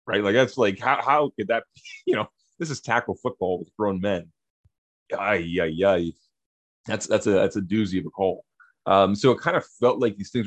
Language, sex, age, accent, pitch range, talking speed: English, male, 30-49, American, 90-125 Hz, 220 wpm